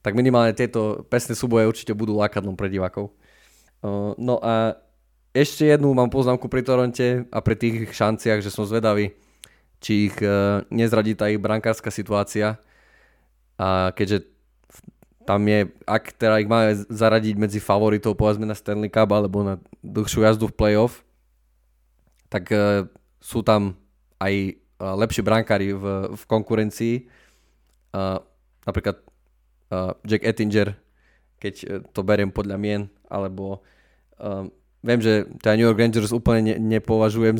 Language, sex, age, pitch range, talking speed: Slovak, male, 20-39, 100-115 Hz, 130 wpm